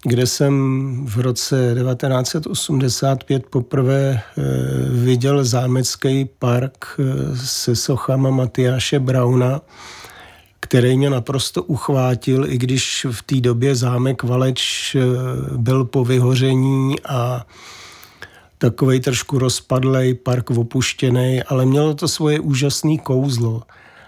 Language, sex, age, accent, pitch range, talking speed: Czech, male, 40-59, native, 125-140 Hz, 95 wpm